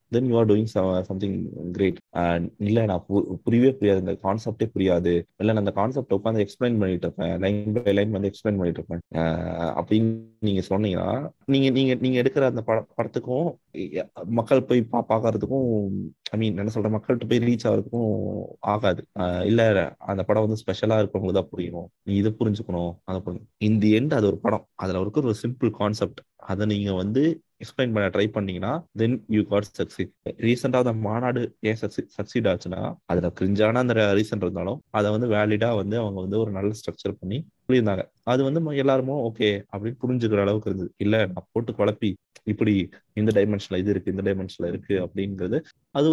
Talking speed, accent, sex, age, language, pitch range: 125 wpm, native, male, 20-39, Tamil, 100-120 Hz